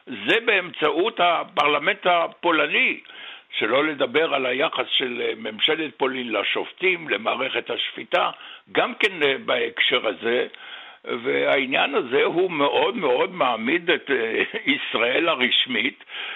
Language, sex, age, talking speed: Hebrew, male, 60-79, 100 wpm